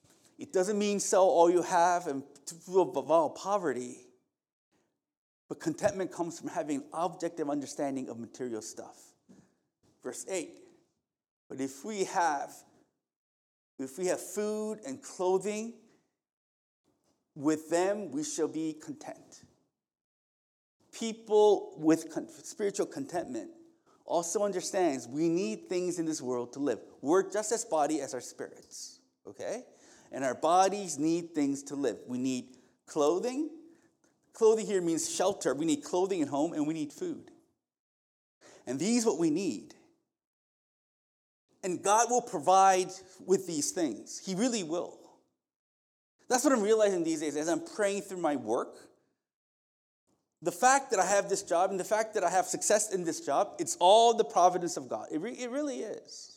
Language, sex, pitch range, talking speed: English, male, 165-265 Hz, 150 wpm